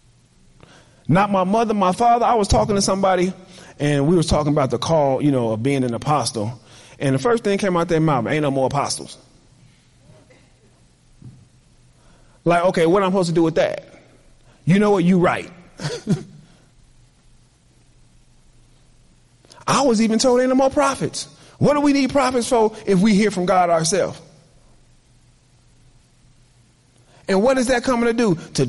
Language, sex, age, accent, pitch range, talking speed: English, male, 30-49, American, 145-220 Hz, 165 wpm